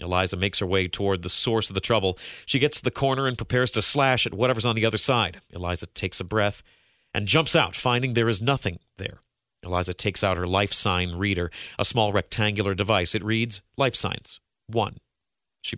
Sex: male